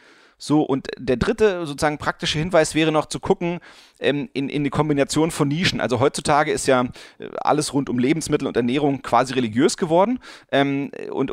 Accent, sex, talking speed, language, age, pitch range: German, male, 175 wpm, German, 40-59, 125-150 Hz